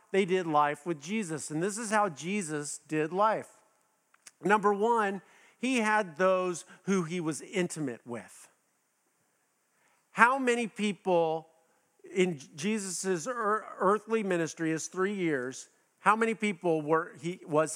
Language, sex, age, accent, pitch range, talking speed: English, male, 50-69, American, 160-215 Hz, 130 wpm